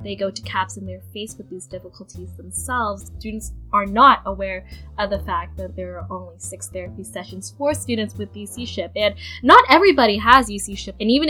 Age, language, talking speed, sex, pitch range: 10-29, English, 190 wpm, female, 175-220 Hz